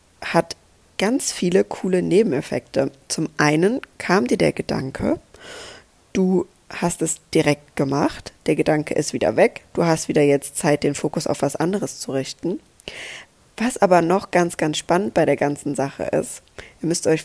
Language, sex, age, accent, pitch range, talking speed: German, female, 20-39, German, 150-185 Hz, 165 wpm